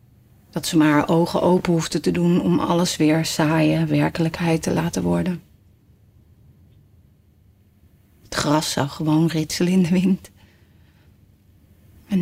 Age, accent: 30-49, Dutch